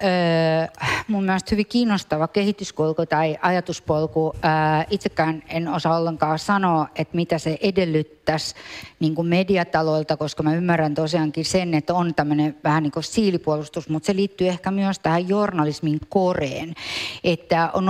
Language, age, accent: English, 50-69, Finnish